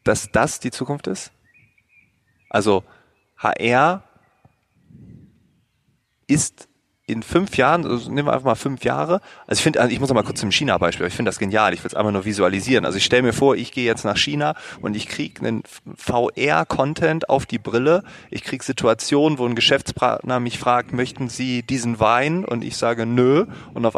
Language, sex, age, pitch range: German, male, 30-49, 110-130 Hz